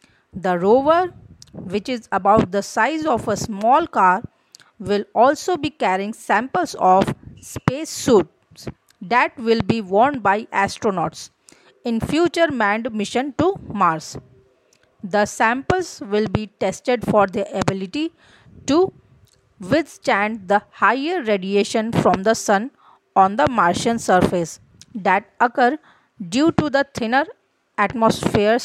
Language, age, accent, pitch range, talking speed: English, 40-59, Indian, 200-255 Hz, 120 wpm